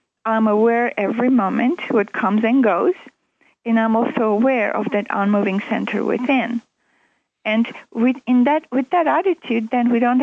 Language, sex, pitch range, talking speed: English, female, 215-260 Hz, 160 wpm